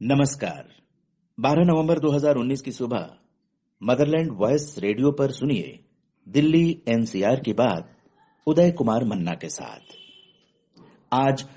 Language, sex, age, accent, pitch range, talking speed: Hindi, male, 50-69, native, 120-165 Hz, 110 wpm